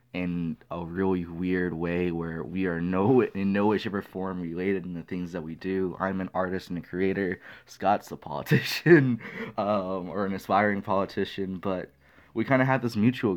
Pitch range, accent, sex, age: 85-100 Hz, American, male, 20-39